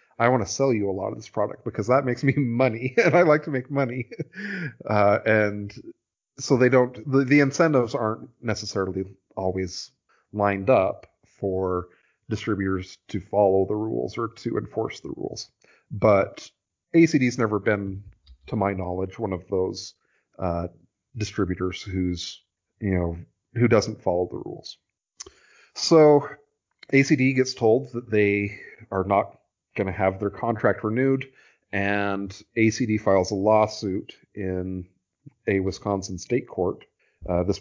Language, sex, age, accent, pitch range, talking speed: English, male, 30-49, American, 95-120 Hz, 145 wpm